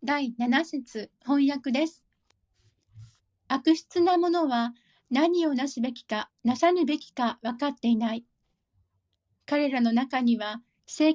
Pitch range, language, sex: 235-315 Hz, Japanese, female